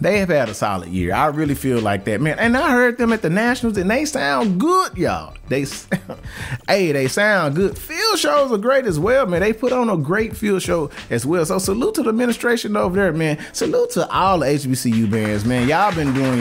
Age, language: 30-49, English